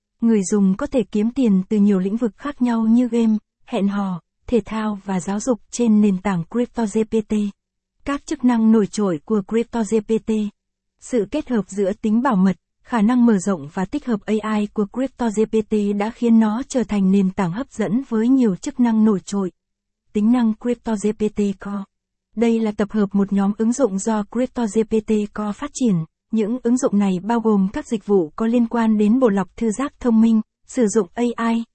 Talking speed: 195 wpm